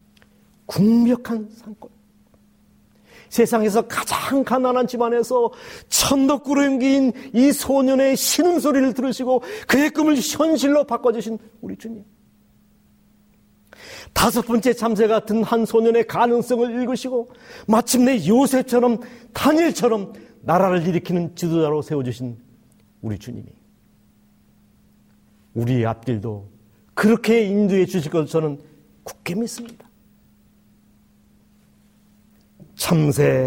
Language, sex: Korean, male